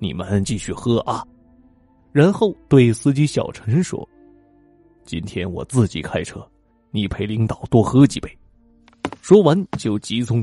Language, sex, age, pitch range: Chinese, male, 20-39, 110-165 Hz